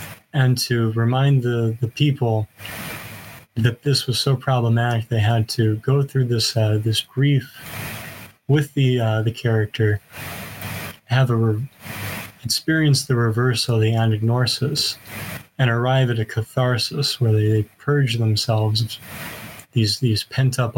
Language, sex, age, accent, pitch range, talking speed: English, male, 30-49, American, 110-130 Hz, 140 wpm